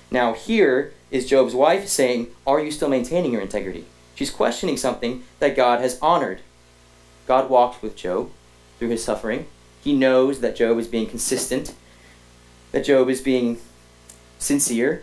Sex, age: male, 30-49